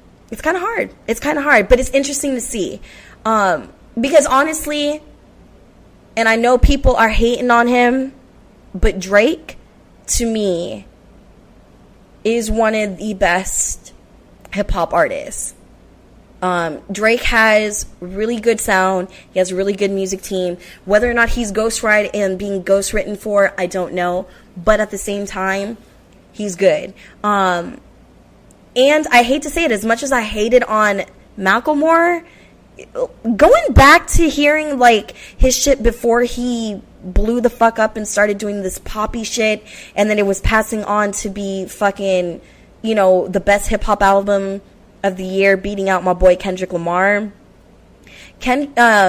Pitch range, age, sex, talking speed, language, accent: 195-245 Hz, 20-39, female, 155 wpm, English, American